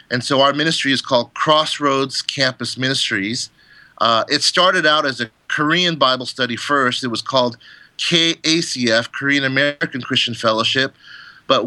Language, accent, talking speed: English, American, 145 wpm